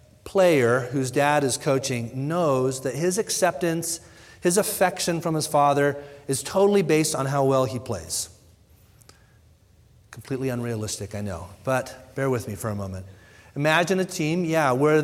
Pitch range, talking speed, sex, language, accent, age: 125-155 Hz, 150 wpm, male, English, American, 40-59